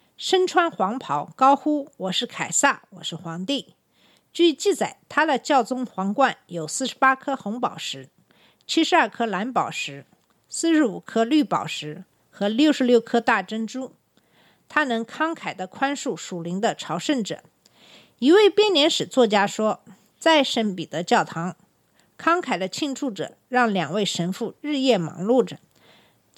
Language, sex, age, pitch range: Chinese, female, 50-69, 190-280 Hz